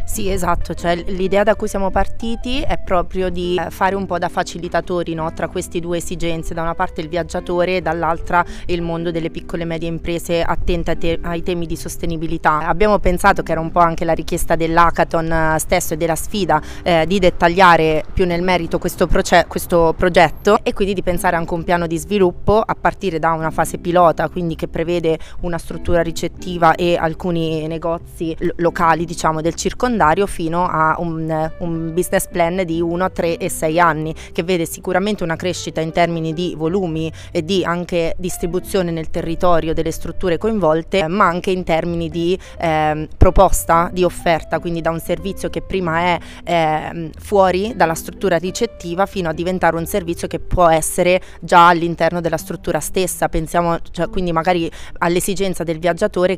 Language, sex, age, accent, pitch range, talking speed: Italian, female, 20-39, native, 165-180 Hz, 170 wpm